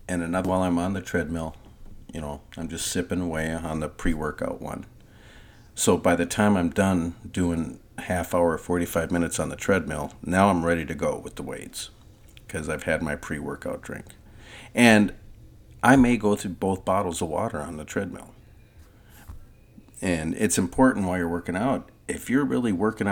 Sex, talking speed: male, 175 wpm